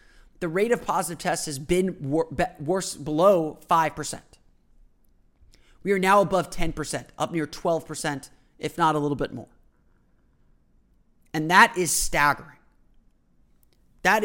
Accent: American